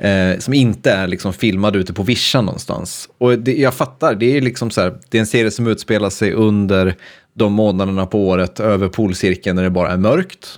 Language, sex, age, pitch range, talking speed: Swedish, male, 30-49, 100-125 Hz, 215 wpm